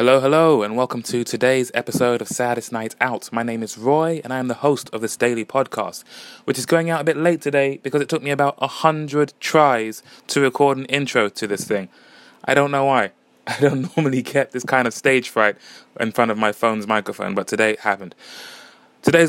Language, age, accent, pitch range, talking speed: English, 20-39, British, 120-145 Hz, 220 wpm